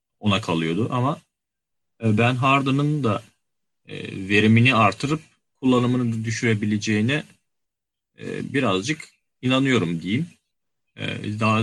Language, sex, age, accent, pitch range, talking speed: Turkish, male, 40-59, native, 105-130 Hz, 70 wpm